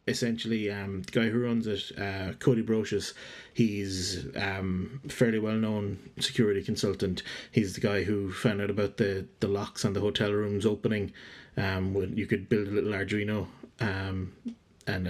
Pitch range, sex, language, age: 100-115 Hz, male, English, 30-49